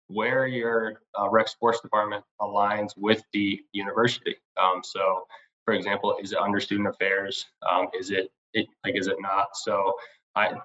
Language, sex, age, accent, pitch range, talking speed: English, male, 20-39, American, 100-115 Hz, 165 wpm